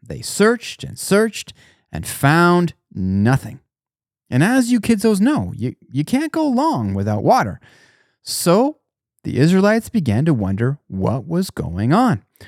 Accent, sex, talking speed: American, male, 145 wpm